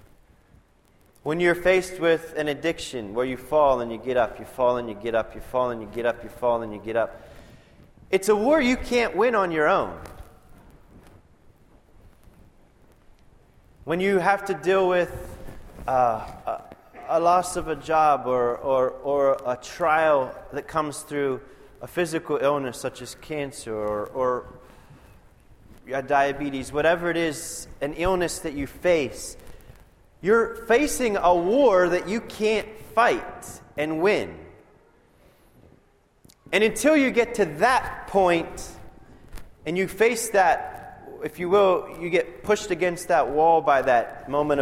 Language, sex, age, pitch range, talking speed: English, male, 30-49, 125-190 Hz, 150 wpm